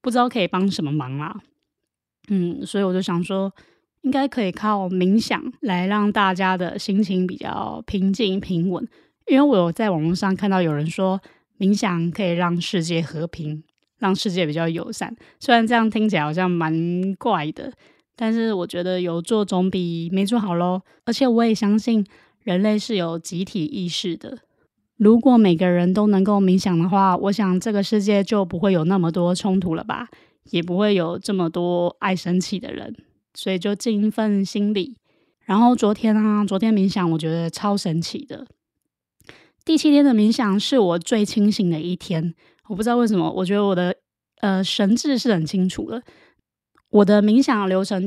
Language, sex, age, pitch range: Chinese, female, 20-39, 180-215 Hz